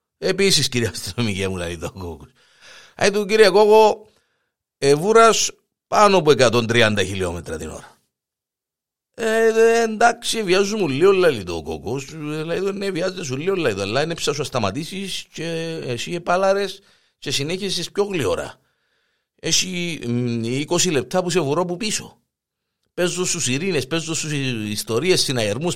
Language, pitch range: Greek, 120-190 Hz